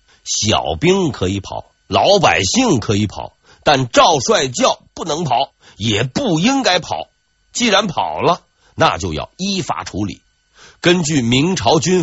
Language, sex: Chinese, male